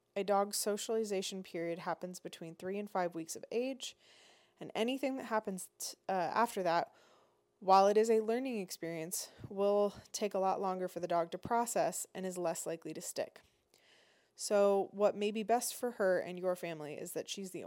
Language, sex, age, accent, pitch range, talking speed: English, female, 20-39, American, 170-210 Hz, 185 wpm